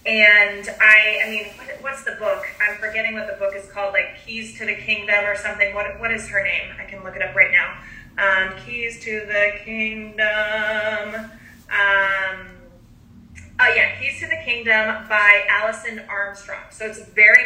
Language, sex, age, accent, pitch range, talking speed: English, female, 30-49, American, 200-230 Hz, 175 wpm